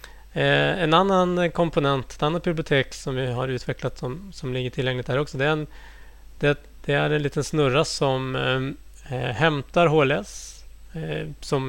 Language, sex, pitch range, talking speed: Swedish, male, 125-155 Hz, 160 wpm